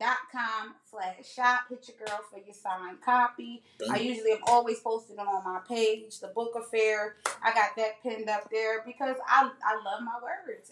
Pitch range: 220-260 Hz